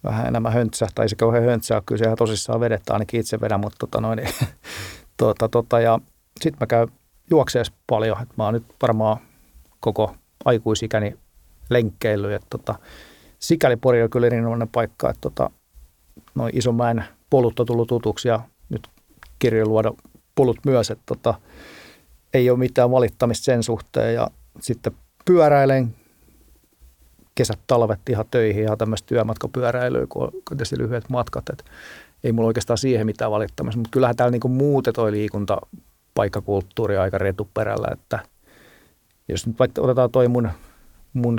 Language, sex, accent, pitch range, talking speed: Finnish, male, native, 110-125 Hz, 135 wpm